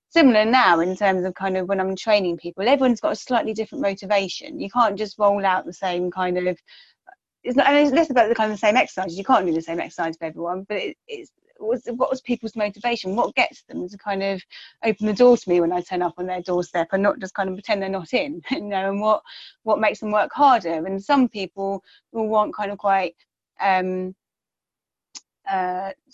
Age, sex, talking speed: 30-49, female, 220 wpm